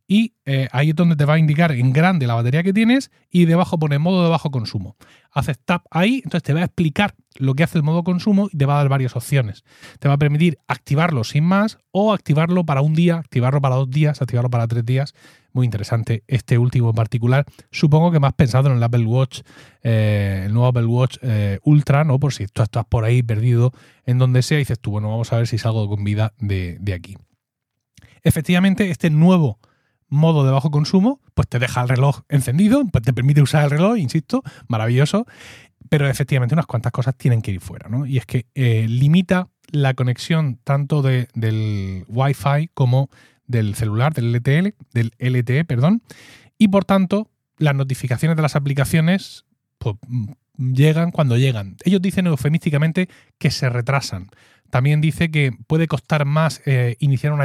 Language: Spanish